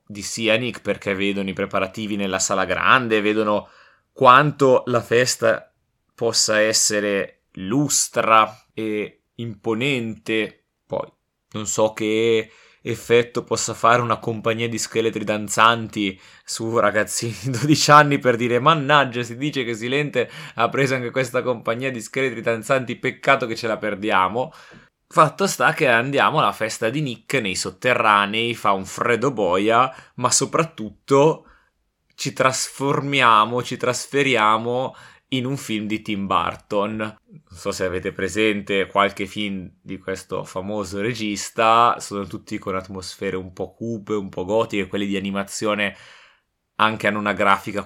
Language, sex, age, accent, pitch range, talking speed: Italian, male, 20-39, native, 100-120 Hz, 135 wpm